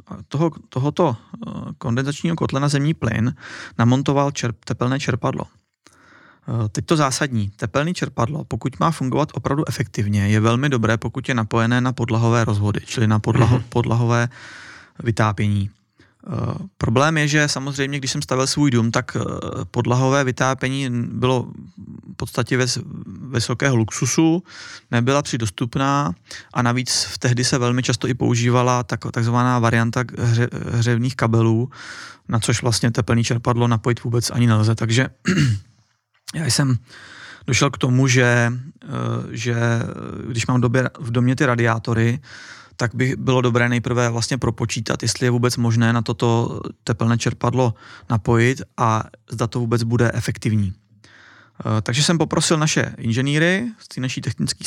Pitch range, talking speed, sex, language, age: 115-135 Hz, 130 wpm, male, Czech, 30-49